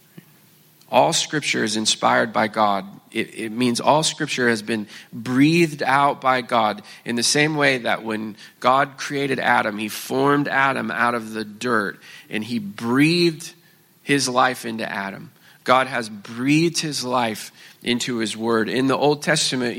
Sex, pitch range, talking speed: male, 120-155 Hz, 160 wpm